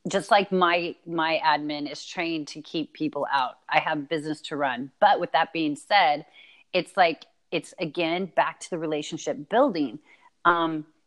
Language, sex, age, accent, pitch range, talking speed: English, female, 30-49, American, 165-210 Hz, 170 wpm